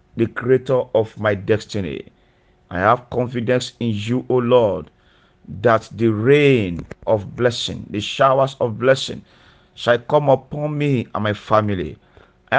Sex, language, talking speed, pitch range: male, English, 145 wpm, 110-135 Hz